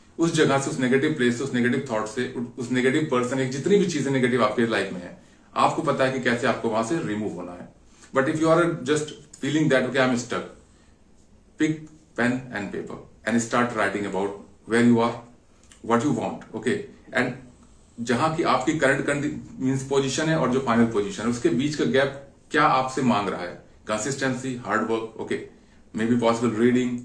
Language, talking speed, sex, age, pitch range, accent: Hindi, 180 wpm, male, 30-49, 115-145 Hz, native